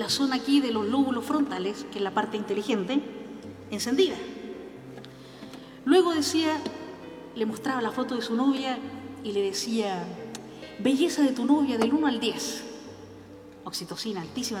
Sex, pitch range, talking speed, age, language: female, 225-305 Hz, 145 wpm, 40-59, Spanish